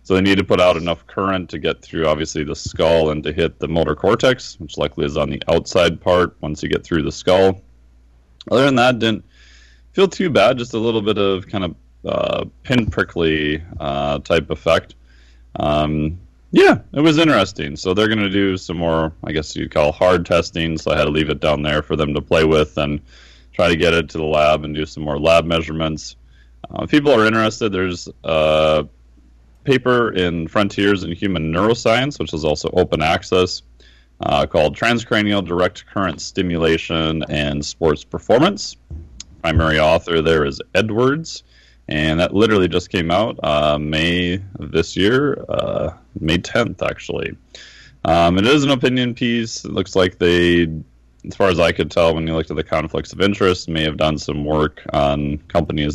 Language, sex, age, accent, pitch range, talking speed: English, male, 30-49, American, 75-95 Hz, 185 wpm